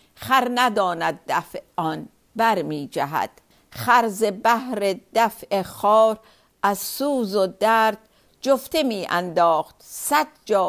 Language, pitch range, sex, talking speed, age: Persian, 195-245 Hz, female, 100 wpm, 50-69